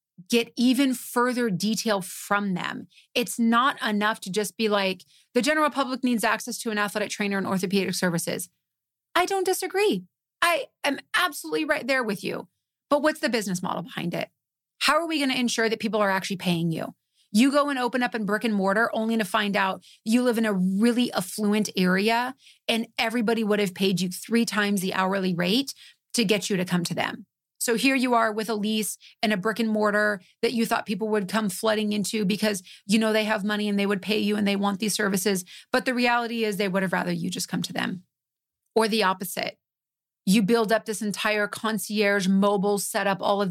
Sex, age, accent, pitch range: female, 30-49, American, 195-230 Hz